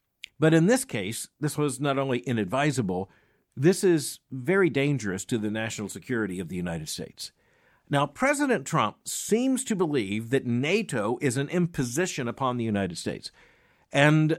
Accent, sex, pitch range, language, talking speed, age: American, male, 110-150 Hz, English, 155 wpm, 50-69